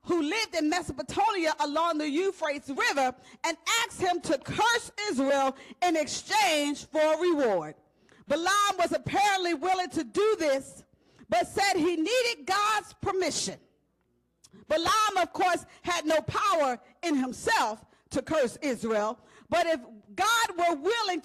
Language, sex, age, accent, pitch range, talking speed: English, female, 40-59, American, 305-415 Hz, 135 wpm